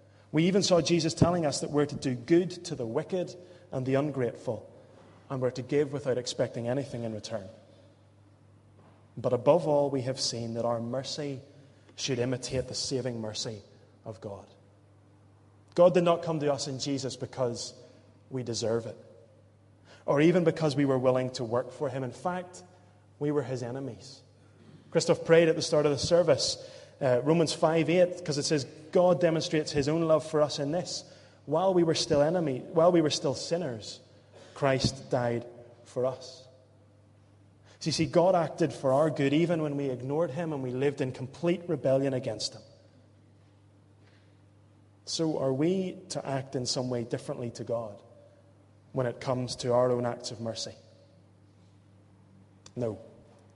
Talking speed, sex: 170 wpm, male